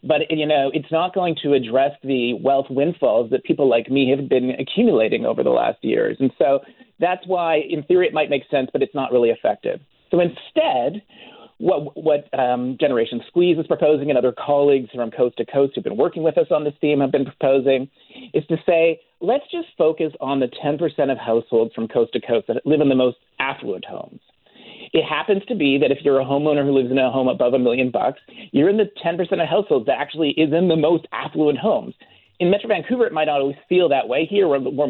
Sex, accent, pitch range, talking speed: male, American, 135-180 Hz, 225 wpm